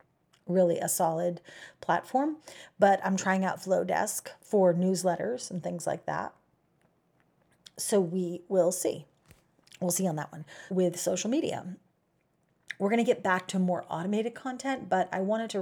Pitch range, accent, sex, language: 175-220 Hz, American, female, English